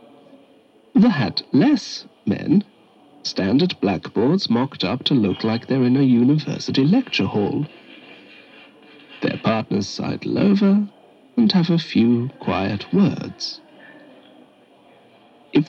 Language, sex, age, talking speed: English, male, 60-79, 110 wpm